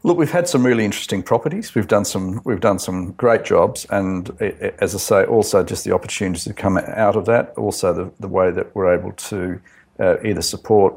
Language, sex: English, male